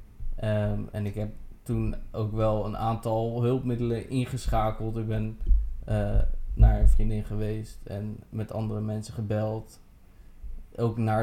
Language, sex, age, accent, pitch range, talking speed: Dutch, male, 20-39, Dutch, 105-115 Hz, 130 wpm